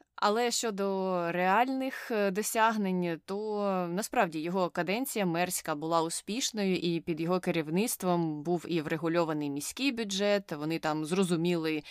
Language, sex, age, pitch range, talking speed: Ukrainian, female, 20-39, 160-190 Hz, 115 wpm